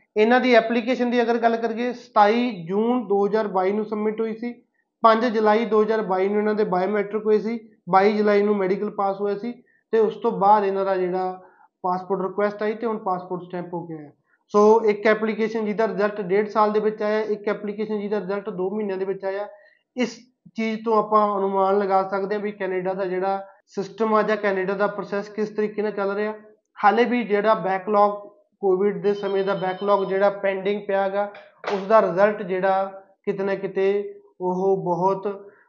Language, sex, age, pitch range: Punjabi, male, 20-39, 195-220 Hz